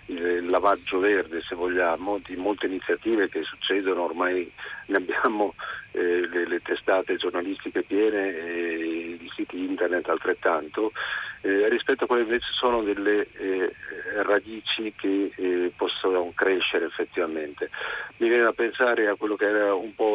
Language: Italian